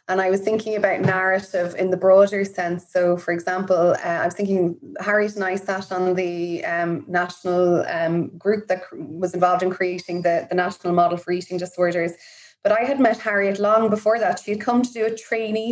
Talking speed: 205 wpm